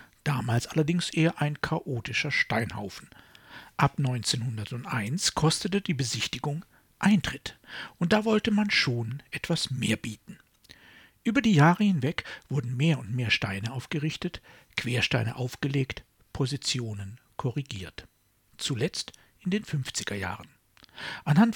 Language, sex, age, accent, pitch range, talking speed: German, male, 60-79, German, 115-170 Hz, 110 wpm